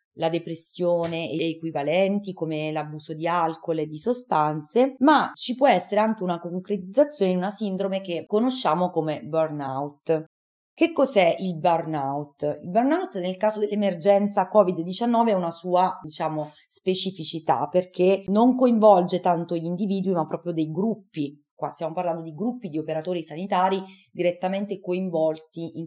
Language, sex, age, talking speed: Italian, female, 30-49, 140 wpm